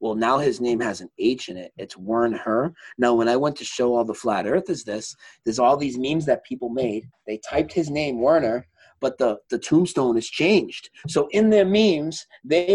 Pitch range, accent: 120-160 Hz, American